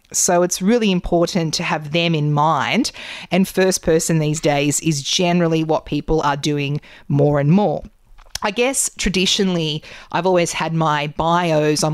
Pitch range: 155-185 Hz